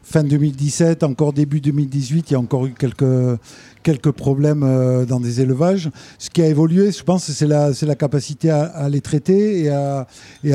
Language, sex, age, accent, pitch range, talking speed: French, male, 50-69, French, 140-165 Hz, 200 wpm